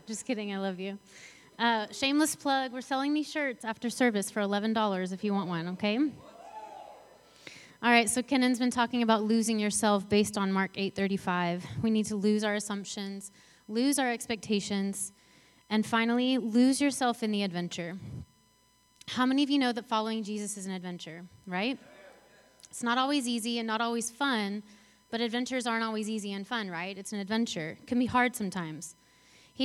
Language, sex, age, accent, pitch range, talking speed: English, female, 20-39, American, 195-235 Hz, 180 wpm